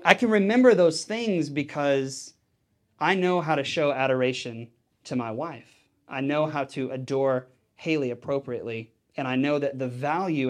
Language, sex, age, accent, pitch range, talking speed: English, male, 30-49, American, 130-160 Hz, 160 wpm